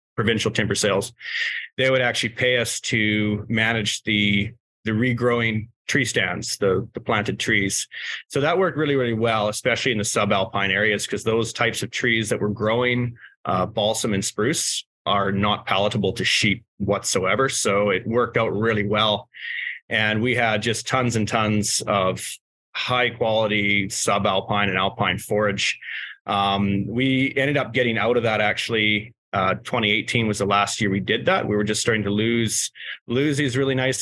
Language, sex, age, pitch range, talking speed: English, male, 30-49, 100-120 Hz, 170 wpm